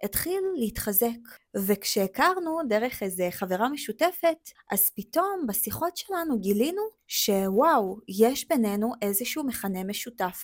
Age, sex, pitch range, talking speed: 20-39, female, 200-260 Hz, 105 wpm